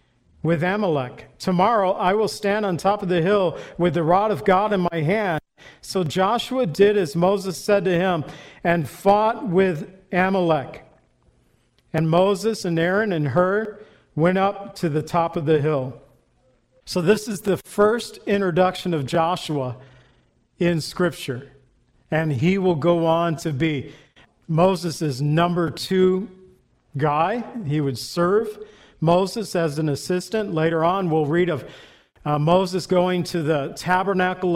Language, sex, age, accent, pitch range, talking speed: English, male, 50-69, American, 155-190 Hz, 145 wpm